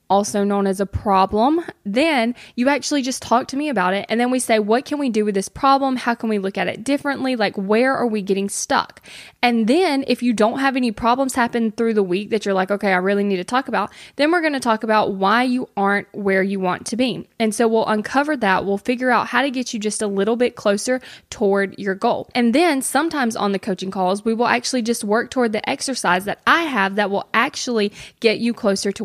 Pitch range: 200-260 Hz